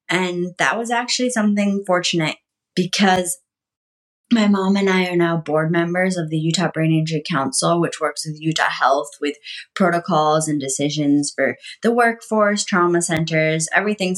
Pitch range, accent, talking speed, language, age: 155-200 Hz, American, 150 wpm, English, 20-39